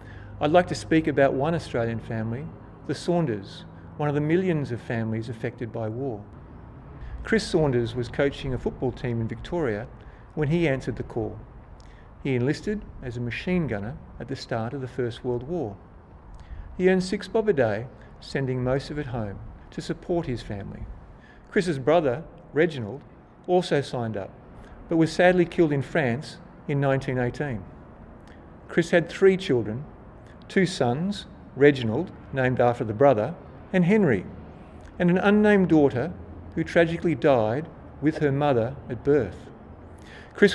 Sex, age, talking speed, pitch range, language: male, 50-69, 150 wpm, 110-165 Hz, English